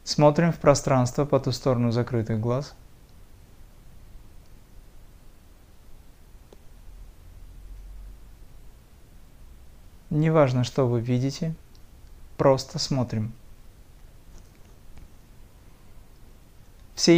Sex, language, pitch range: male, Russian, 95-145 Hz